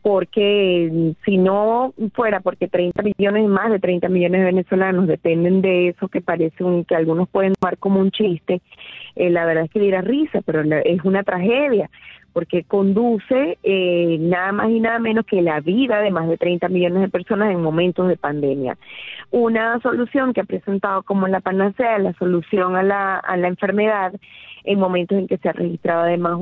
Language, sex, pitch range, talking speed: Spanish, female, 175-200 Hz, 185 wpm